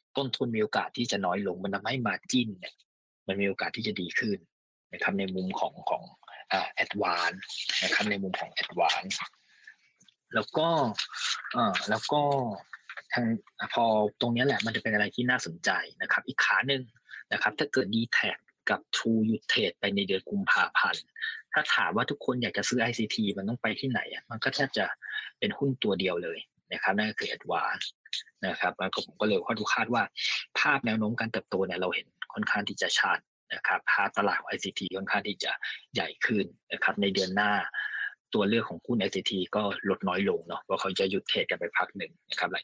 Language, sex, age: Thai, male, 20-39